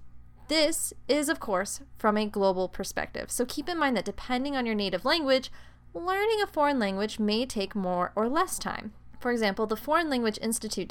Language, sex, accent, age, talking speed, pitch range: English, female, American, 10-29, 185 wpm, 195-275 Hz